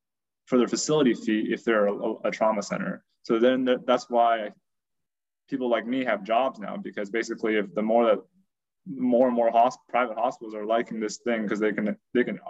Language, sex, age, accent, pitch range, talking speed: English, male, 20-39, American, 105-120 Hz, 190 wpm